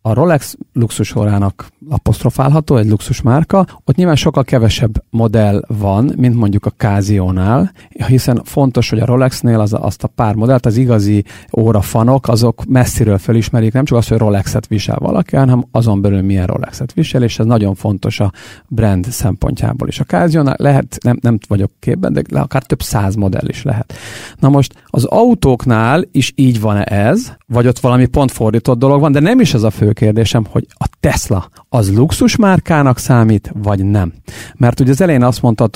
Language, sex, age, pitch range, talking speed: Hungarian, male, 50-69, 105-135 Hz, 175 wpm